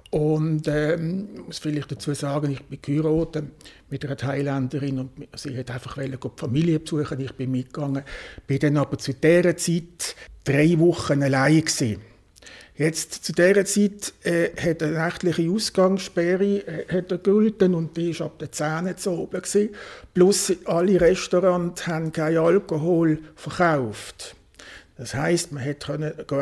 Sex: male